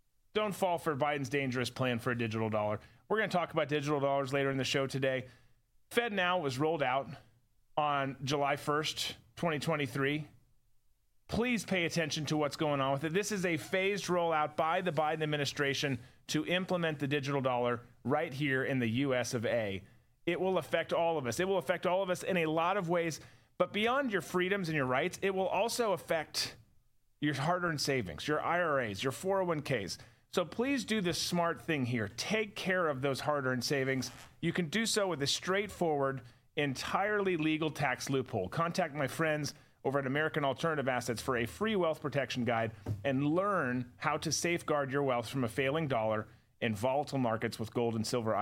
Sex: male